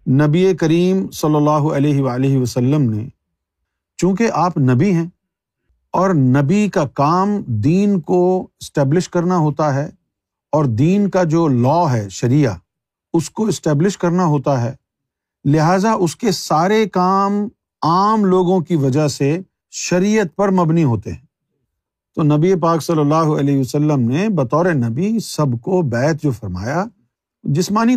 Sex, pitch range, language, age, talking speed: male, 130-185 Hz, Urdu, 50-69, 140 wpm